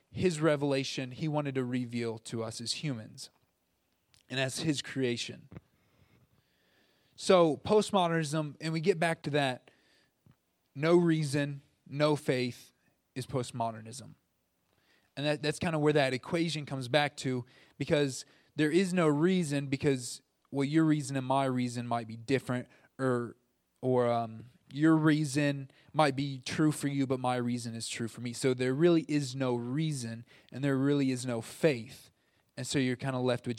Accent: American